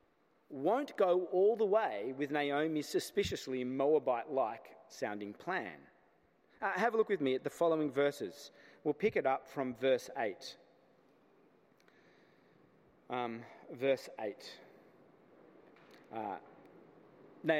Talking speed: 100 wpm